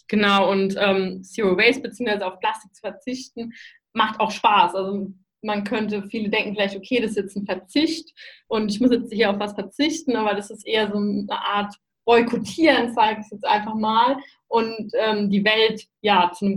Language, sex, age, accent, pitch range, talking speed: German, female, 20-39, German, 205-240 Hz, 195 wpm